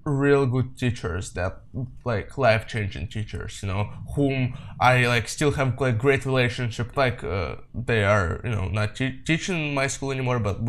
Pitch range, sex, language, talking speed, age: 115-140 Hz, male, English, 170 wpm, 20-39